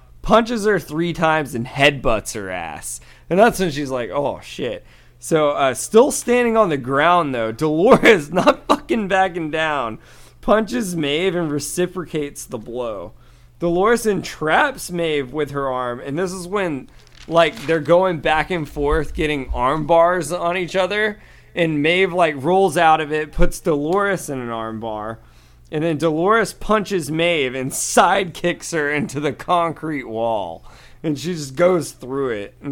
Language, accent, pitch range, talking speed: English, American, 120-175 Hz, 160 wpm